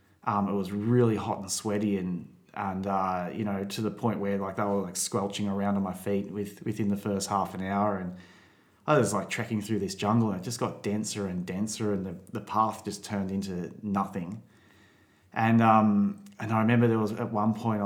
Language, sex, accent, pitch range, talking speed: English, male, Australian, 100-110 Hz, 220 wpm